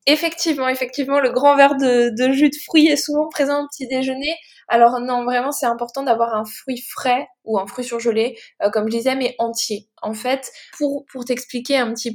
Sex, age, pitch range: female, 20-39, 220-260 Hz